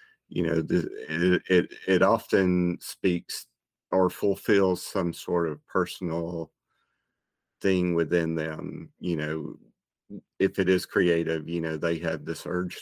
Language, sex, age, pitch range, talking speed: English, male, 40-59, 80-90 Hz, 125 wpm